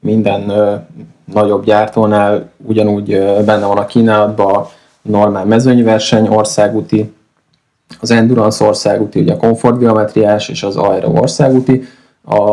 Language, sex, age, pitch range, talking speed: Hungarian, male, 20-39, 105-115 Hz, 125 wpm